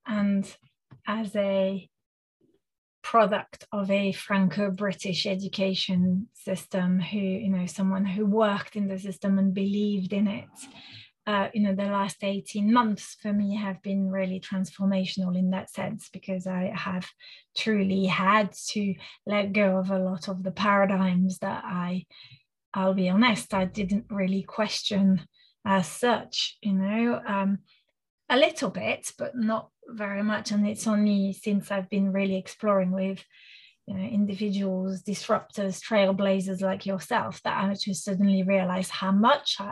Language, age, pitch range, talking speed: English, 30-49, 190-210 Hz, 145 wpm